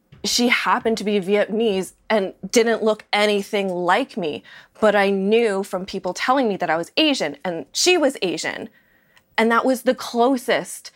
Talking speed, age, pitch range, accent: 170 wpm, 20-39, 190-230 Hz, American